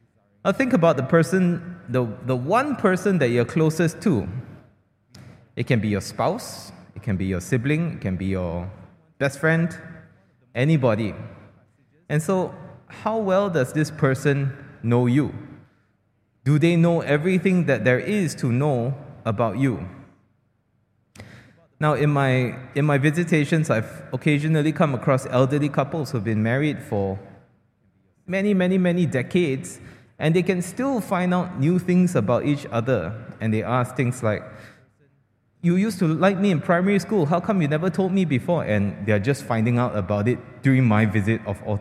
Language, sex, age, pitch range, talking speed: English, male, 20-39, 115-170 Hz, 160 wpm